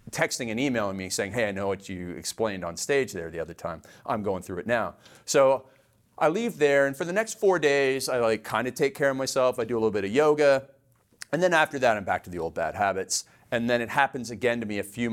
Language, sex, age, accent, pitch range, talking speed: English, male, 40-59, American, 110-140 Hz, 265 wpm